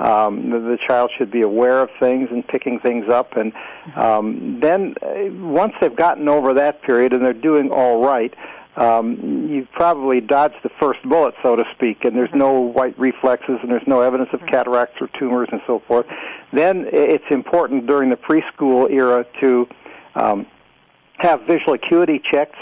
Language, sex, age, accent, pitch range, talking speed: English, male, 60-79, American, 125-140 Hz, 175 wpm